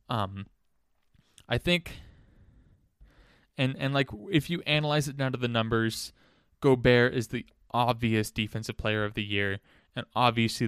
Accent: American